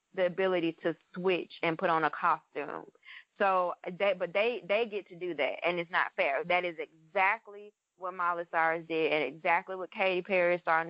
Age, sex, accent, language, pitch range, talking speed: 20-39, female, American, English, 165-190 Hz, 200 wpm